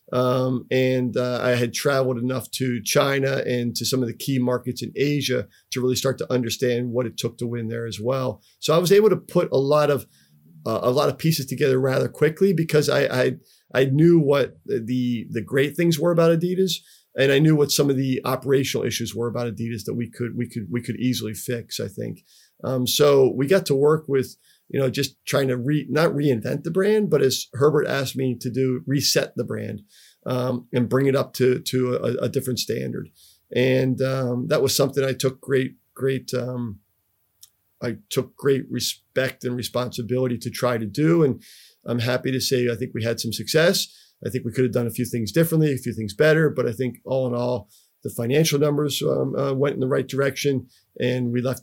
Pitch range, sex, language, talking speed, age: 120-140 Hz, male, German, 215 wpm, 40-59